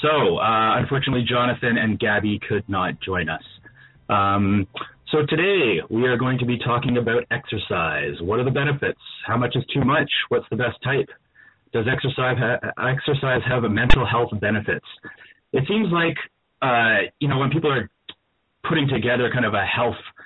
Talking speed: 165 wpm